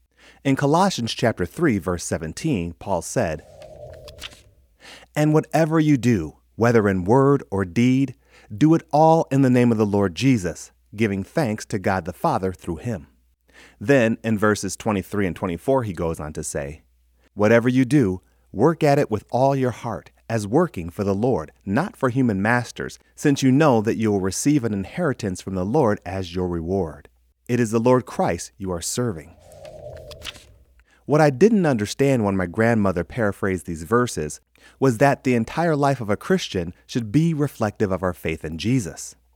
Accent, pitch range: American, 90-135 Hz